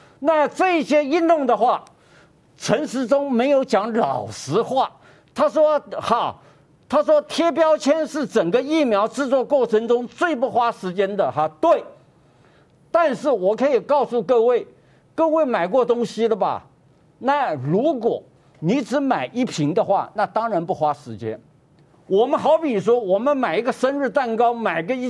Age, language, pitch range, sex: 50-69, Chinese, 175-275 Hz, male